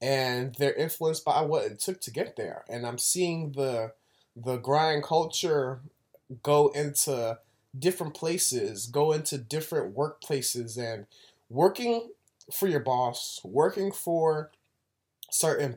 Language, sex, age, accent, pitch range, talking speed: English, male, 20-39, American, 130-170 Hz, 125 wpm